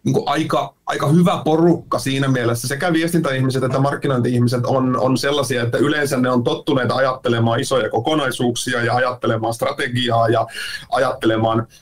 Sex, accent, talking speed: male, native, 135 wpm